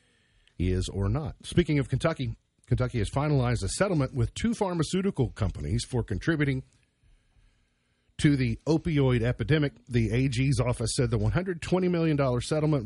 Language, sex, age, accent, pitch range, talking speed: English, male, 50-69, American, 95-140 Hz, 135 wpm